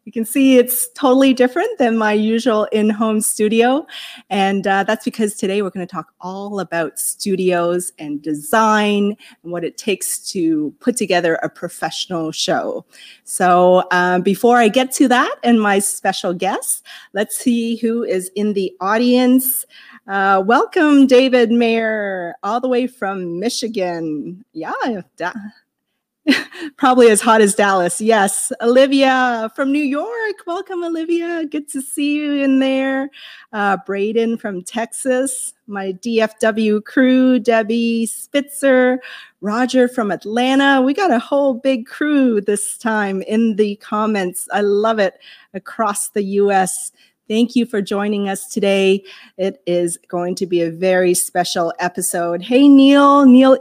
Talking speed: 145 wpm